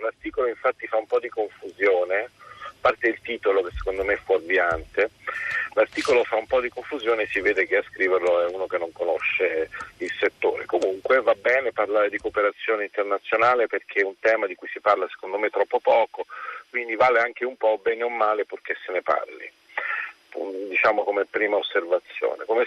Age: 40-59